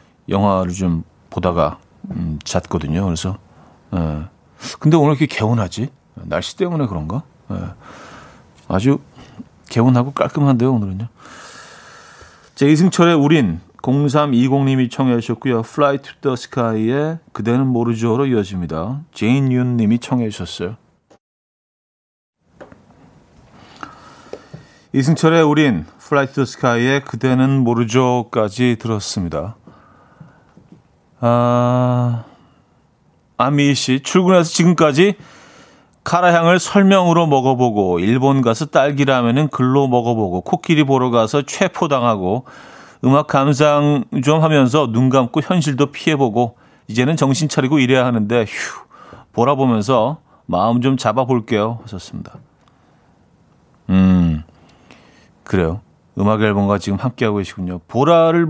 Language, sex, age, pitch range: Korean, male, 40-59, 110-145 Hz